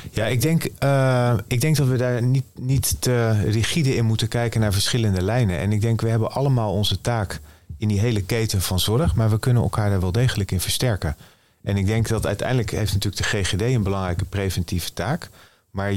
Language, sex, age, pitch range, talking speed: Dutch, male, 40-59, 95-120 Hz, 205 wpm